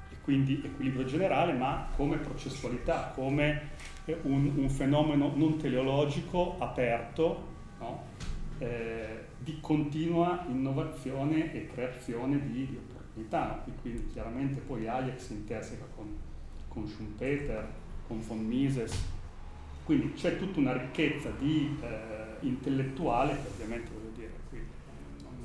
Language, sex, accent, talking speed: Italian, male, native, 120 wpm